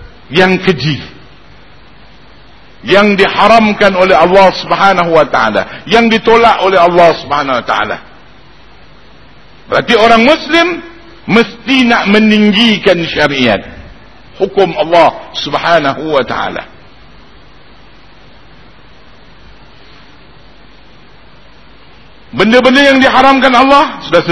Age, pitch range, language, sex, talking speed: 50-69, 180-255 Hz, Malay, male, 80 wpm